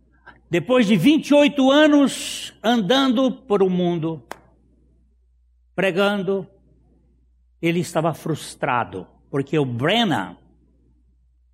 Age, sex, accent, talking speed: 60-79, male, Brazilian, 85 wpm